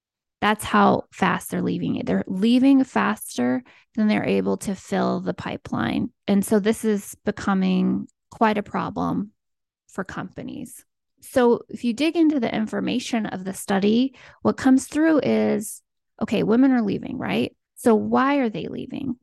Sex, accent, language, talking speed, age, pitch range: female, American, English, 155 wpm, 20-39, 200-260 Hz